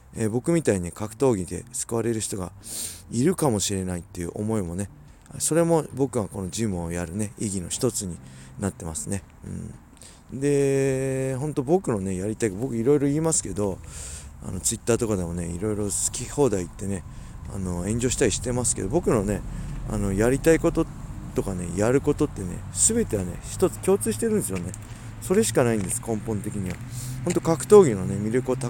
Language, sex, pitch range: Japanese, male, 90-125 Hz